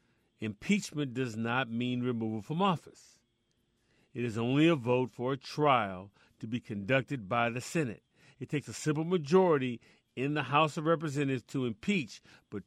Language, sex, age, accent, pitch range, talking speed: English, male, 40-59, American, 115-155 Hz, 160 wpm